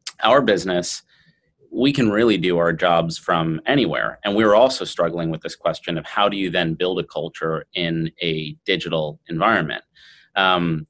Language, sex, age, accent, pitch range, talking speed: English, male, 30-49, American, 85-105 Hz, 165 wpm